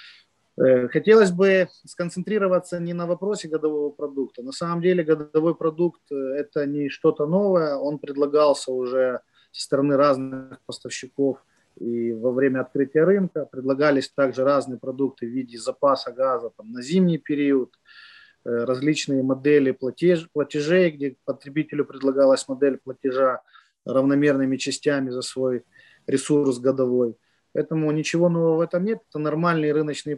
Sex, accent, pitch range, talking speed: male, native, 135-175 Hz, 125 wpm